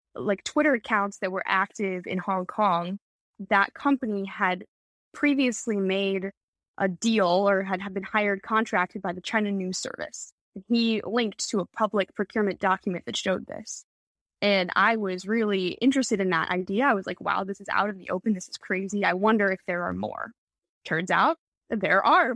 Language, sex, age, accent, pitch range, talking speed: English, female, 10-29, American, 185-220 Hz, 185 wpm